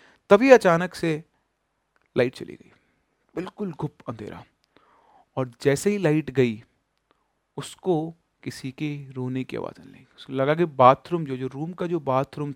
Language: Hindi